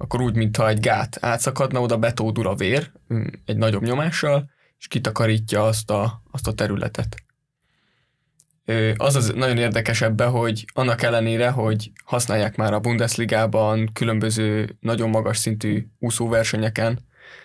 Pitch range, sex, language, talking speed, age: 110-125 Hz, male, Hungarian, 125 wpm, 20-39